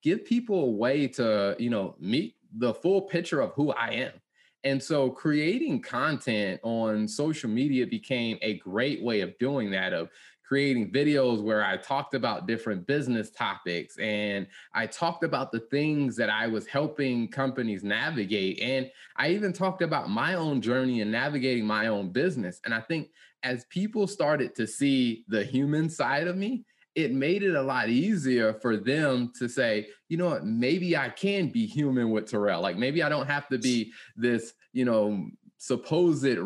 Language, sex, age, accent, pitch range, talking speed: English, male, 20-39, American, 115-155 Hz, 180 wpm